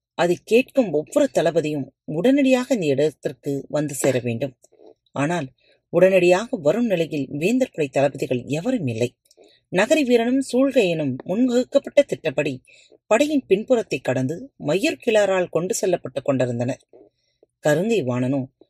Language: Tamil